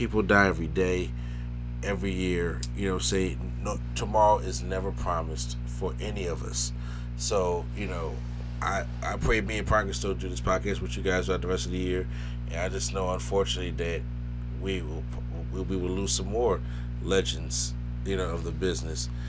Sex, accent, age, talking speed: male, American, 30-49, 185 wpm